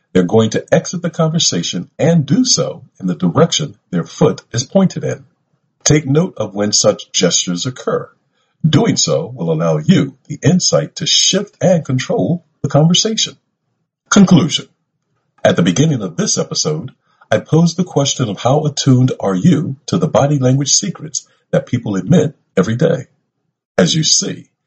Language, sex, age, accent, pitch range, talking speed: English, male, 50-69, American, 135-170 Hz, 160 wpm